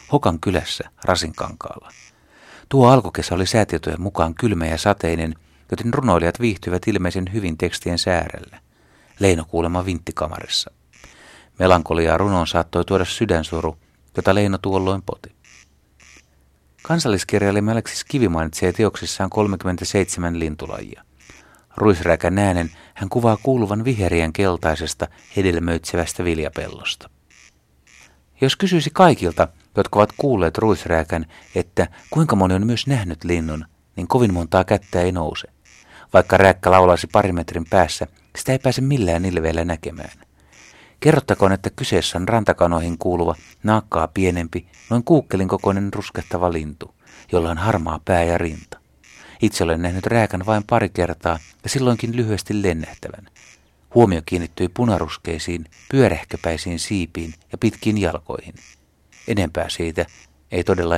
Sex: male